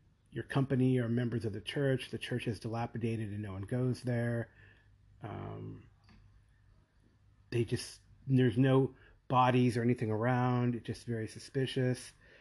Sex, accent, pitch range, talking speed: male, American, 105-125 Hz, 140 wpm